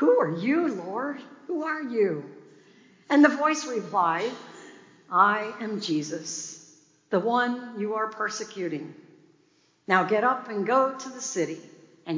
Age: 60-79